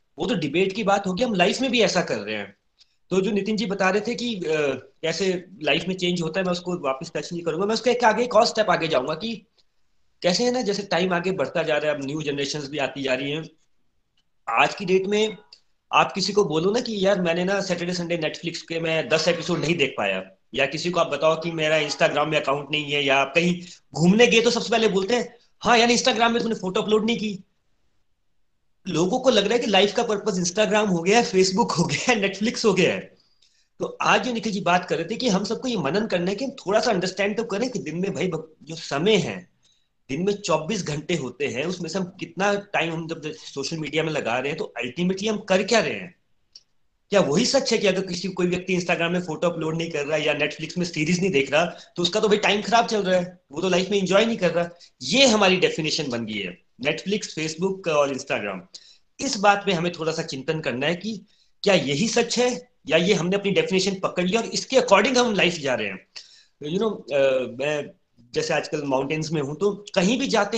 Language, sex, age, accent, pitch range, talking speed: Hindi, male, 30-49, native, 160-210 Hz, 235 wpm